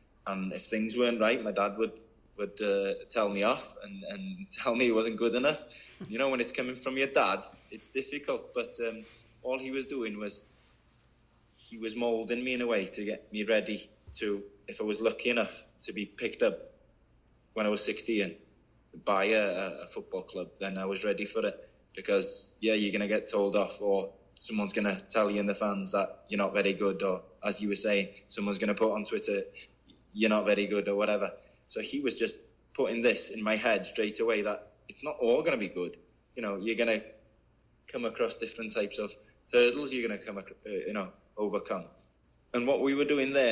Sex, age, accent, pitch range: male, 20-39, British, 100-120 Hz